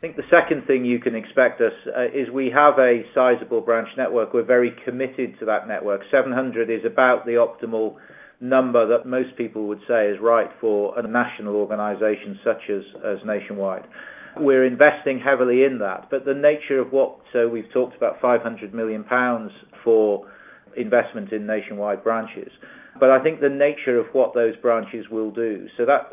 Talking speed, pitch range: 180 wpm, 110-130 Hz